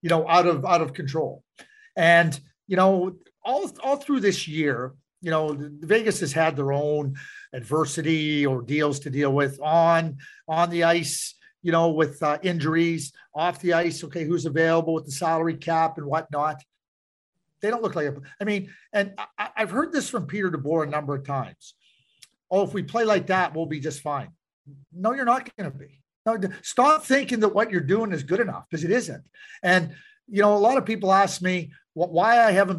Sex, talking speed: male, 195 wpm